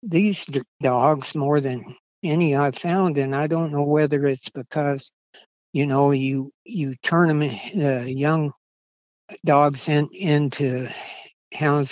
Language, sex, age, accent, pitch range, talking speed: English, male, 60-79, American, 130-150 Hz, 130 wpm